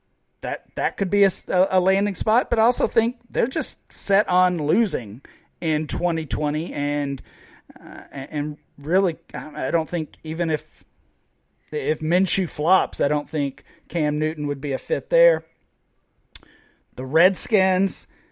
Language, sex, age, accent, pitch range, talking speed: English, male, 40-59, American, 145-180 Hz, 145 wpm